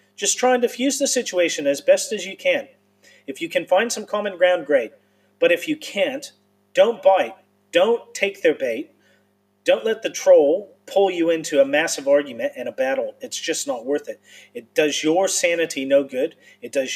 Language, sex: English, male